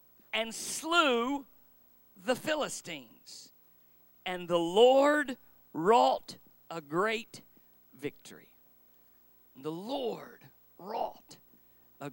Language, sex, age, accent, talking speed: English, male, 50-69, American, 75 wpm